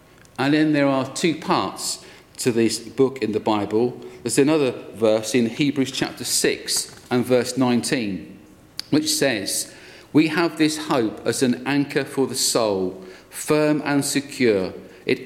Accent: British